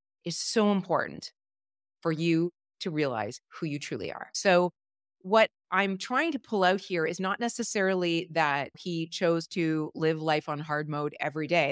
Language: English